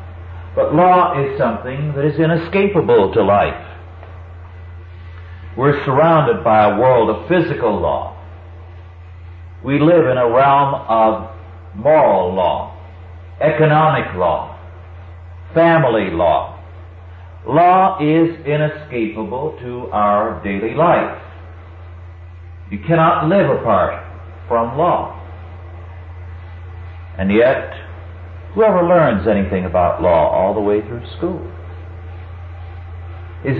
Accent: American